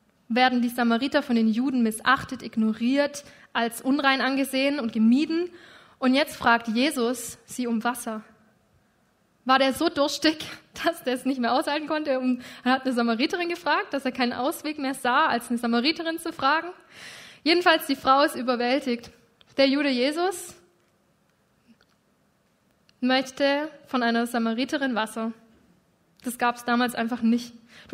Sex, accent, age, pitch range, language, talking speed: female, German, 20-39, 235-275 Hz, German, 145 wpm